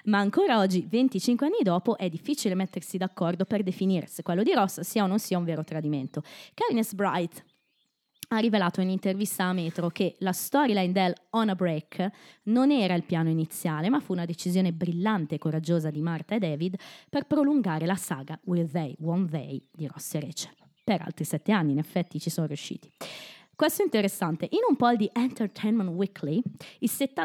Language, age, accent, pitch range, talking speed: Italian, 20-39, native, 165-220 Hz, 185 wpm